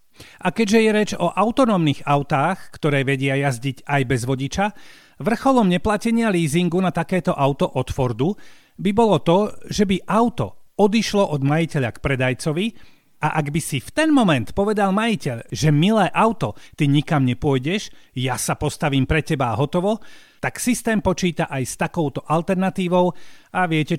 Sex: male